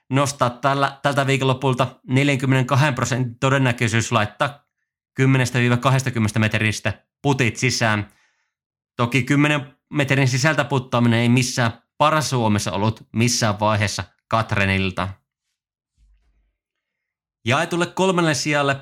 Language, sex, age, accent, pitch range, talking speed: Finnish, male, 30-49, native, 110-140 Hz, 85 wpm